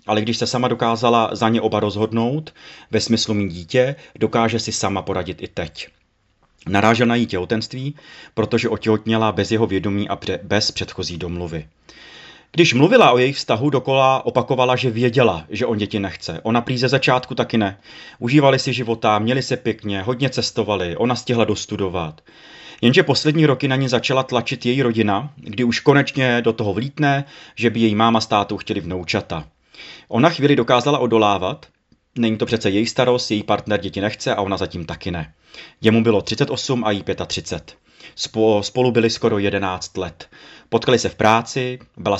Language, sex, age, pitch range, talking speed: Czech, male, 30-49, 100-125 Hz, 170 wpm